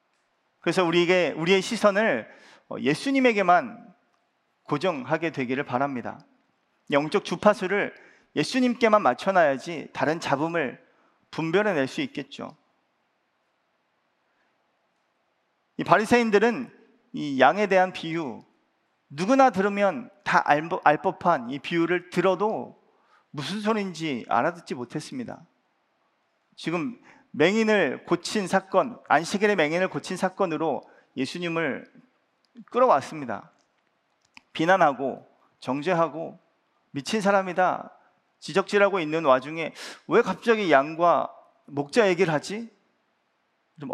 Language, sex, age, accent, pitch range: Korean, male, 40-59, native, 160-215 Hz